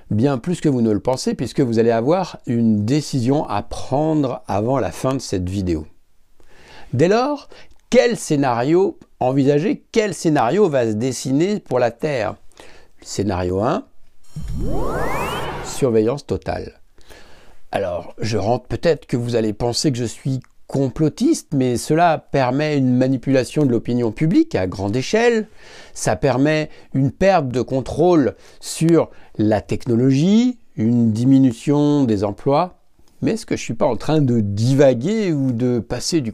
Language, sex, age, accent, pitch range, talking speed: French, male, 60-79, French, 115-155 Hz, 145 wpm